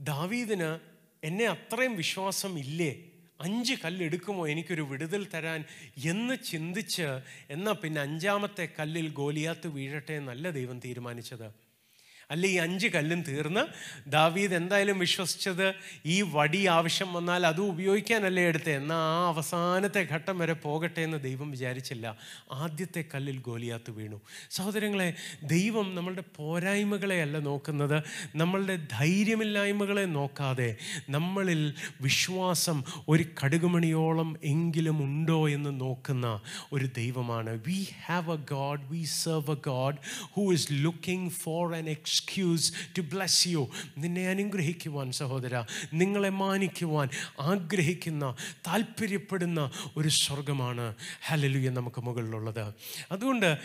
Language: Malayalam